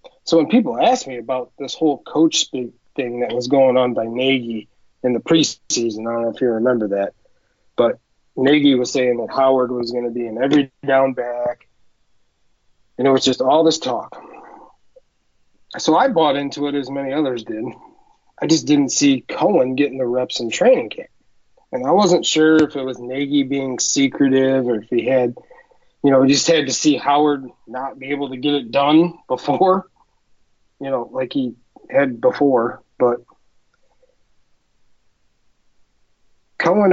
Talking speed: 170 wpm